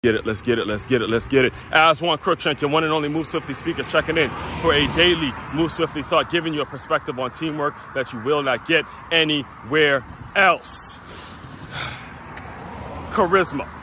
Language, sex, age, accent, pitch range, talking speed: English, male, 30-49, American, 115-150 Hz, 185 wpm